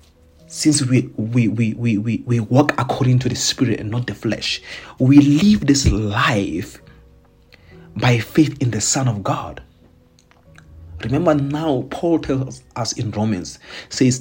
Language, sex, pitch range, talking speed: English, male, 115-145 Hz, 150 wpm